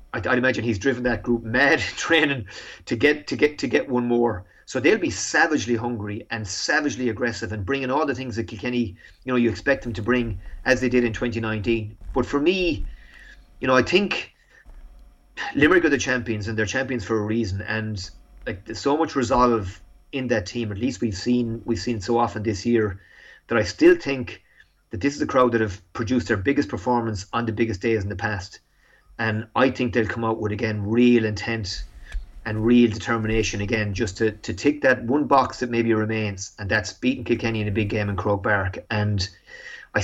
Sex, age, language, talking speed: male, 30-49, English, 205 wpm